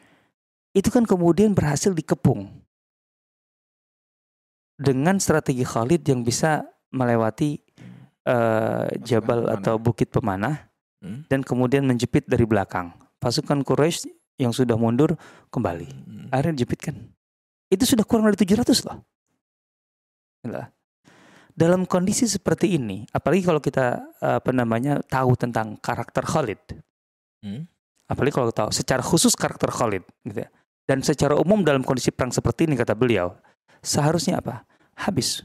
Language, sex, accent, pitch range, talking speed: Indonesian, male, native, 120-160 Hz, 120 wpm